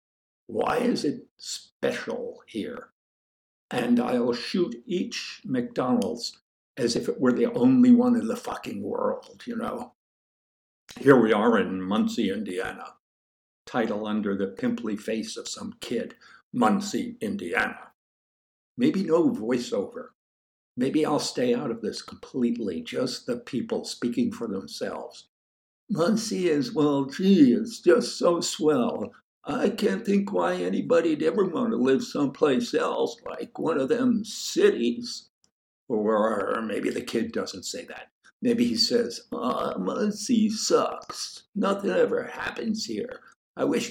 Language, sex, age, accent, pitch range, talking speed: English, male, 60-79, American, 160-245 Hz, 135 wpm